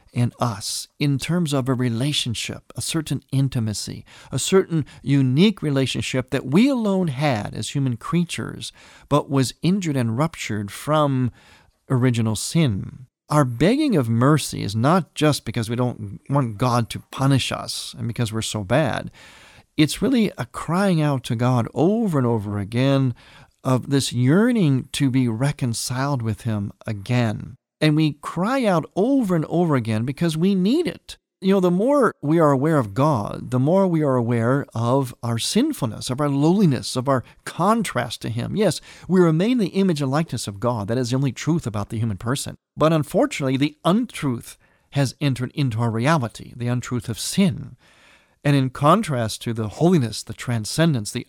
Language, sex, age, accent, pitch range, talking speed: English, male, 40-59, American, 120-155 Hz, 170 wpm